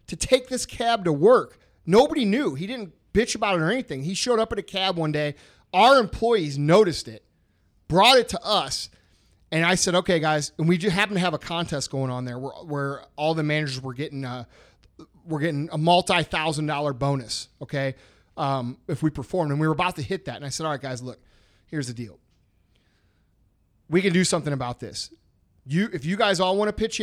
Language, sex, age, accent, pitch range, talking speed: English, male, 30-49, American, 135-185 Hz, 215 wpm